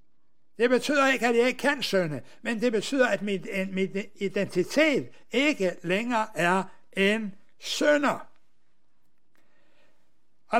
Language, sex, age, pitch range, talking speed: Danish, male, 60-79, 195-255 Hz, 115 wpm